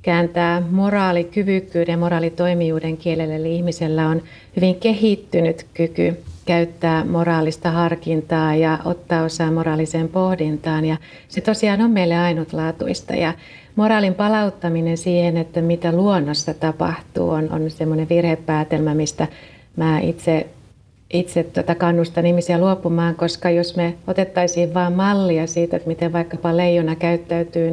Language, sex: Finnish, female